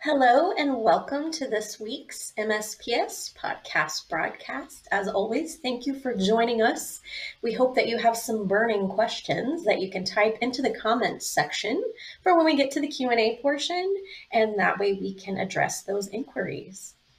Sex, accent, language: female, American, English